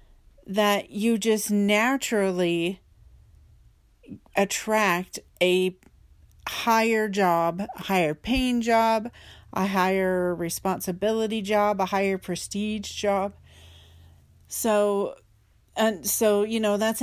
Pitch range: 175-215 Hz